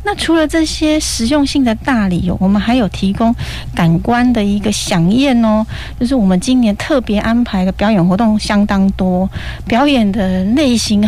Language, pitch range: Chinese, 195-250 Hz